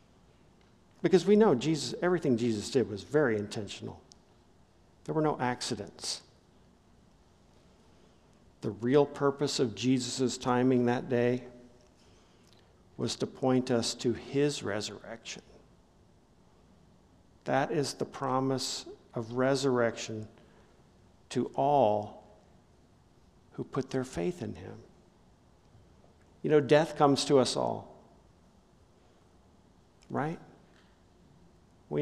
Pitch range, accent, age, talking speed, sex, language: 115-145 Hz, American, 50-69, 95 wpm, male, English